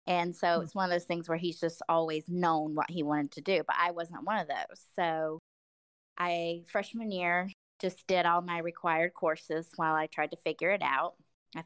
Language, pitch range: English, 160-180 Hz